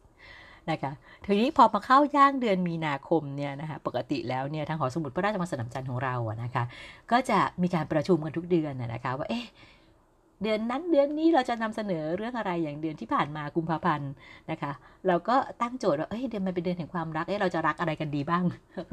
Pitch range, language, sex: 170-285 Hz, Thai, female